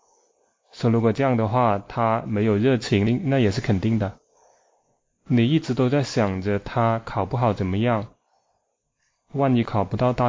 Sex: male